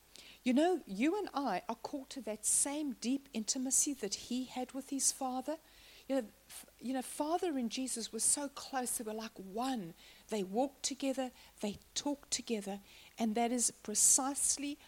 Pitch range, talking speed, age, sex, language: 210-265 Hz, 170 wpm, 60-79, female, English